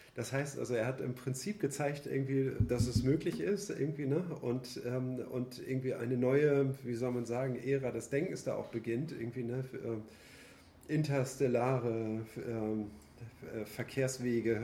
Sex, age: male, 40-59